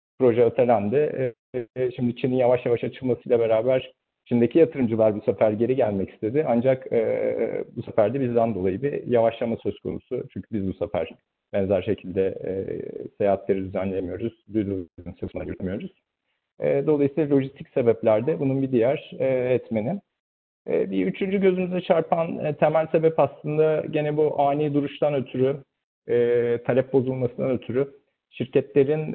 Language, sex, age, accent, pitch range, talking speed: Turkish, male, 50-69, native, 115-155 Hz, 120 wpm